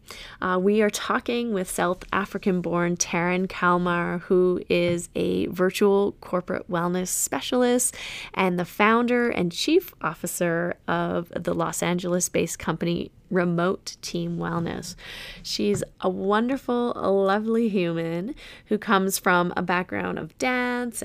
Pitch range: 180-220 Hz